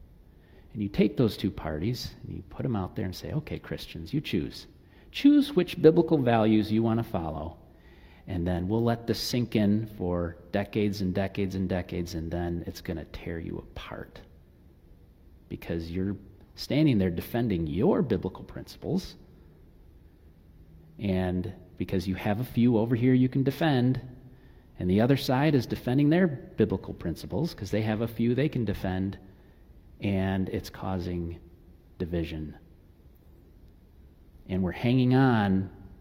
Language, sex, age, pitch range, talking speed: English, male, 40-59, 85-115 Hz, 150 wpm